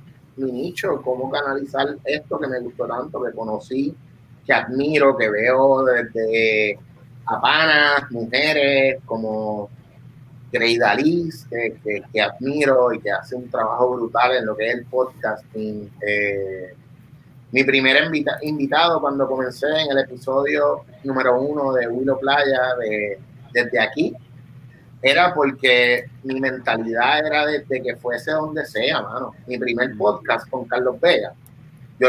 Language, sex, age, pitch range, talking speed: Spanish, male, 30-49, 125-150 Hz, 140 wpm